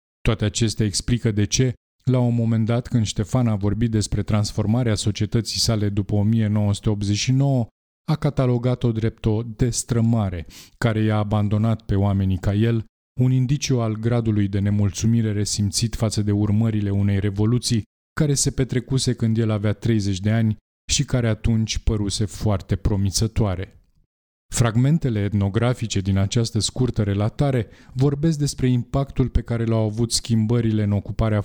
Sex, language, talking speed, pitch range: male, Romanian, 140 wpm, 105-120 Hz